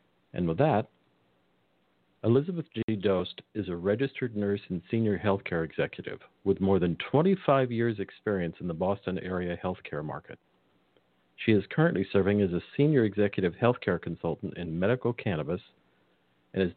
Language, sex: English, male